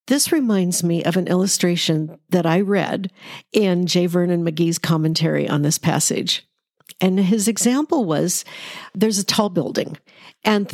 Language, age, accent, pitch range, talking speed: English, 50-69, American, 180-230 Hz, 145 wpm